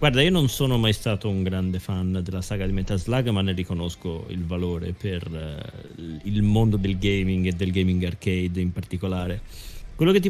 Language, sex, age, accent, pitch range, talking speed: Italian, male, 30-49, native, 95-125 Hz, 200 wpm